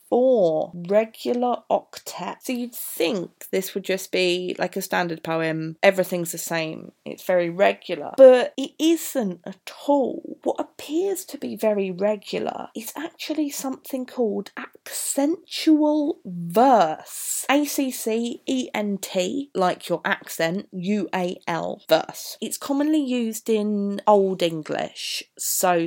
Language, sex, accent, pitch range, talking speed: English, female, British, 175-235 Hz, 135 wpm